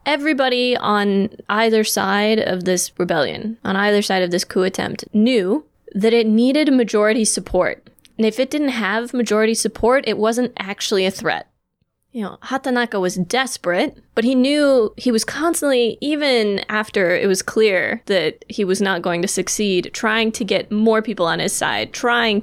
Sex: female